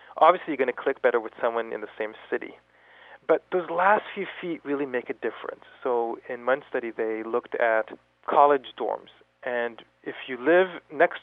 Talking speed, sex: 185 wpm, male